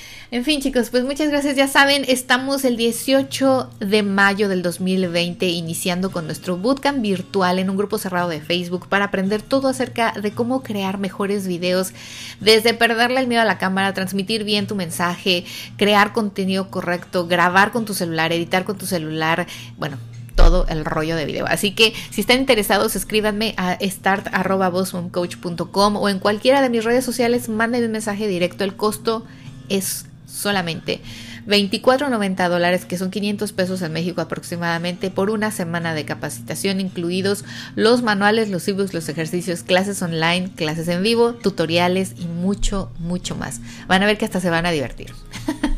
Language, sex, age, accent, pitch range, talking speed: Spanish, female, 30-49, Mexican, 175-220 Hz, 165 wpm